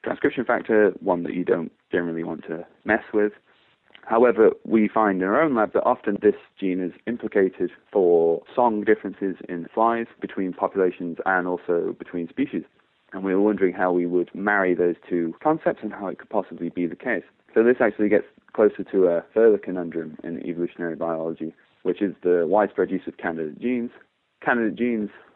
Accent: British